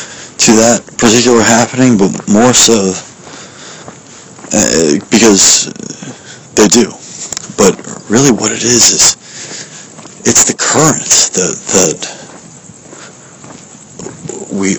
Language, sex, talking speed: English, male, 95 wpm